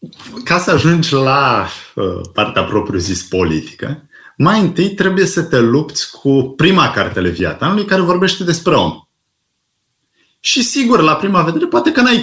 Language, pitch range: Romanian, 115-175 Hz